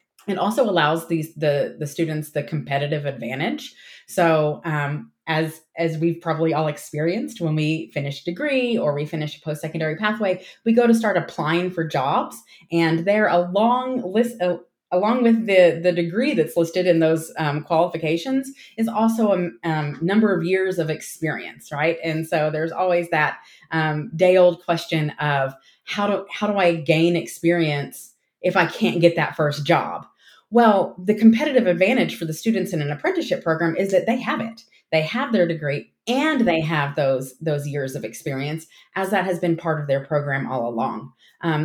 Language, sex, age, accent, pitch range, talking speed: English, female, 30-49, American, 155-200 Hz, 175 wpm